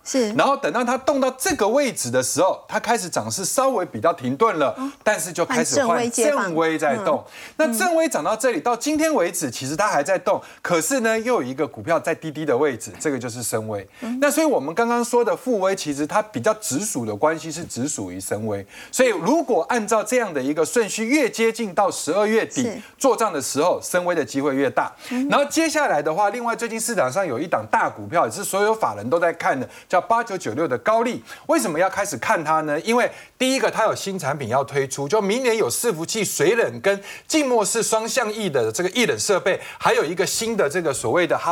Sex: male